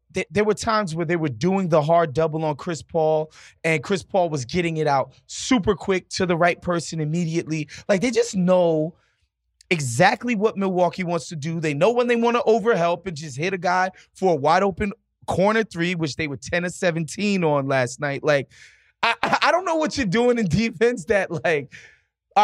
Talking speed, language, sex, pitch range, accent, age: 205 wpm, English, male, 155-190 Hz, American, 20-39